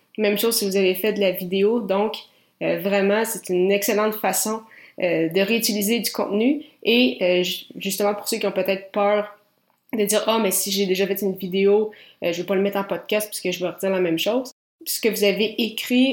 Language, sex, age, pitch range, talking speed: French, female, 20-39, 185-215 Hz, 240 wpm